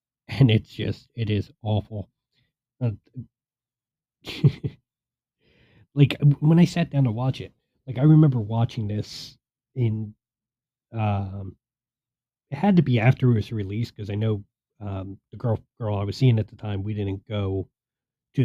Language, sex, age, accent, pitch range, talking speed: English, male, 40-59, American, 110-135 Hz, 155 wpm